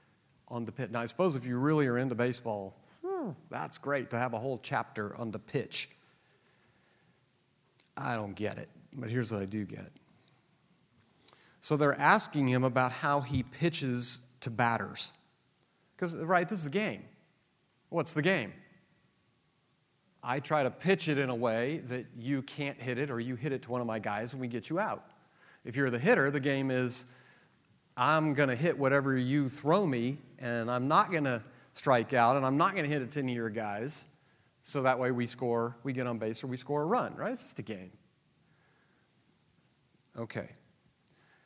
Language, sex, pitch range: English, male, 120-155 Hz